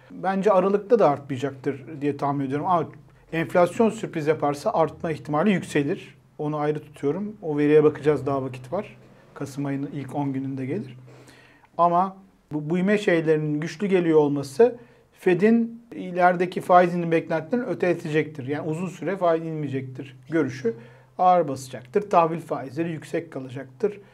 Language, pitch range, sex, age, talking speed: Turkish, 145-180 Hz, male, 40-59, 130 wpm